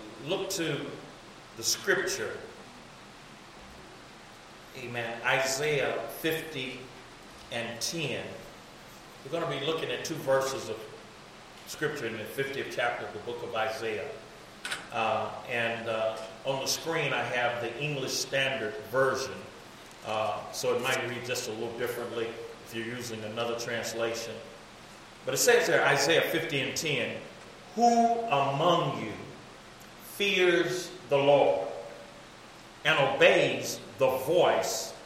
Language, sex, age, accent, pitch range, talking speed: English, male, 40-59, American, 115-165 Hz, 125 wpm